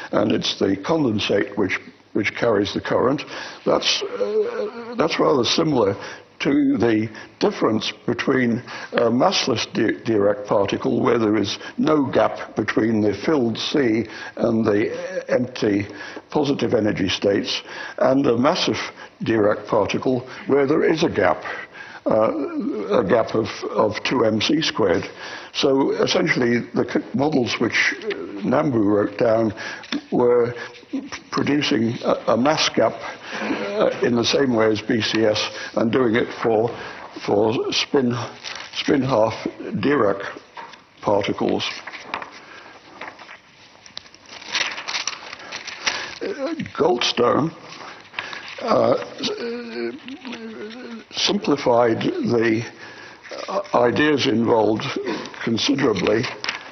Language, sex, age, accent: English, male, 60-79, British